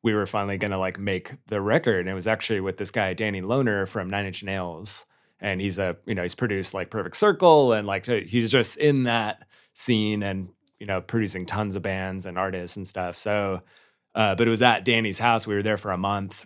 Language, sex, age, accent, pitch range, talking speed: English, male, 30-49, American, 95-115 Hz, 235 wpm